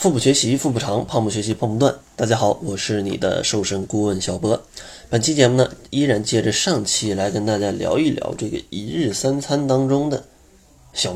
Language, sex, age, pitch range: Chinese, male, 20-39, 105-125 Hz